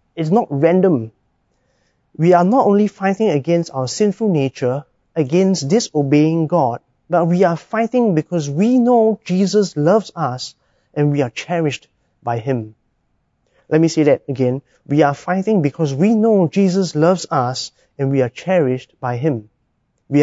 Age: 30-49